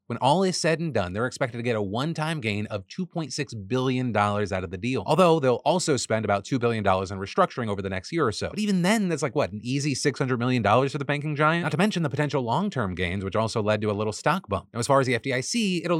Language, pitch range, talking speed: English, 105-150 Hz, 265 wpm